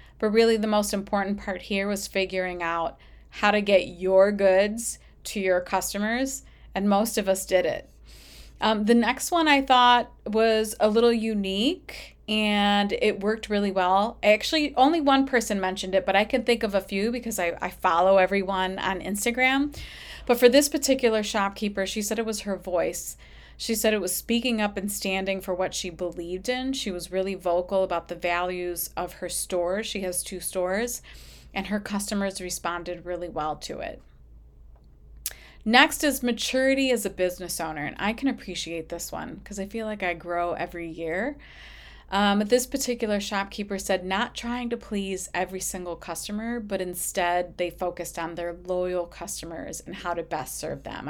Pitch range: 180-220 Hz